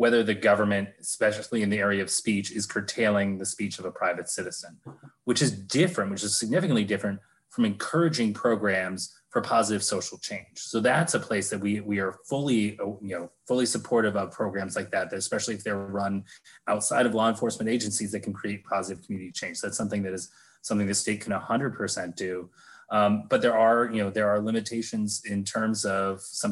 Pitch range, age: 100-115 Hz, 30-49